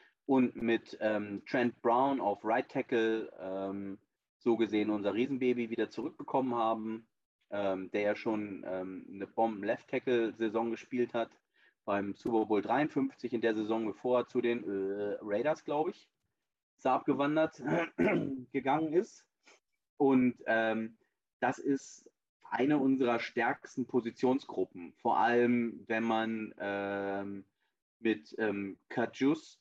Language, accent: German, German